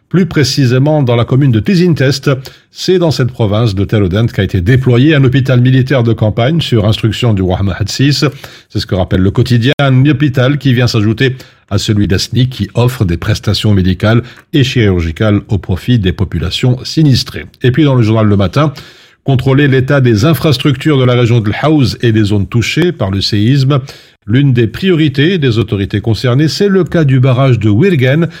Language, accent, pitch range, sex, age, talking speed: French, French, 110-145 Hz, male, 50-69, 185 wpm